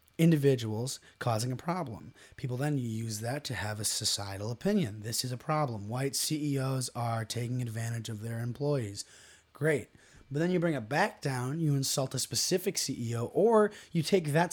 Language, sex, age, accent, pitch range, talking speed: English, male, 20-39, American, 115-165 Hz, 180 wpm